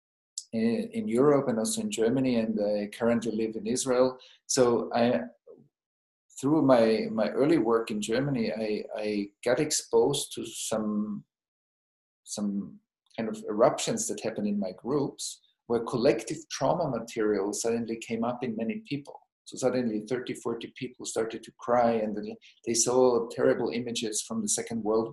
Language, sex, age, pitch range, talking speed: English, male, 50-69, 110-140 Hz, 150 wpm